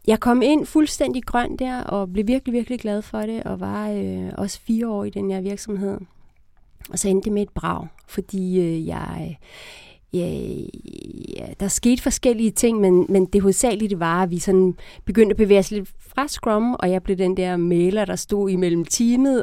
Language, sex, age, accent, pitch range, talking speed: Danish, female, 30-49, native, 175-220 Hz, 190 wpm